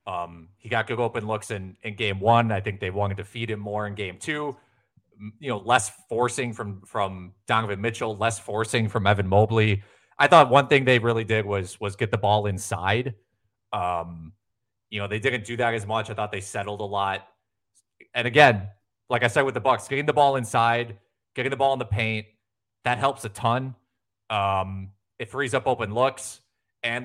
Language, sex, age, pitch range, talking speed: English, male, 30-49, 100-120 Hz, 200 wpm